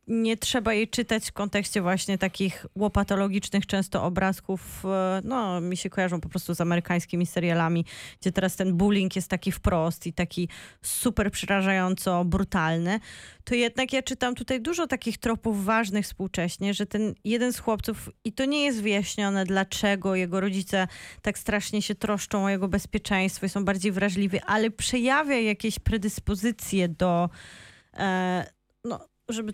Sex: female